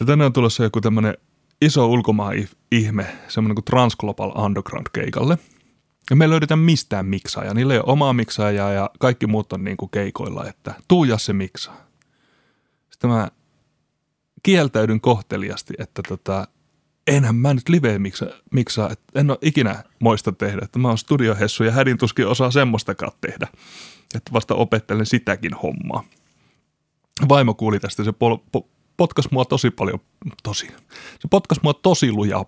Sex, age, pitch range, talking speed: male, 30-49, 100-130 Hz, 155 wpm